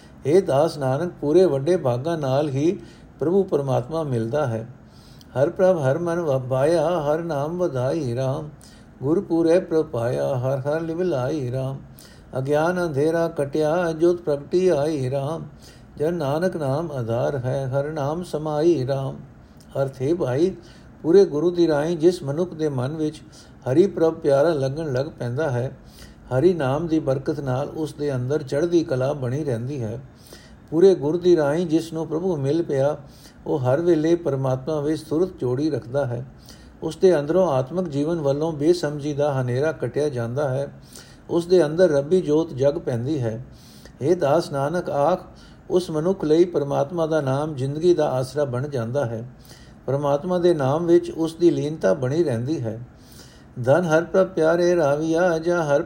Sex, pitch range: male, 135-170 Hz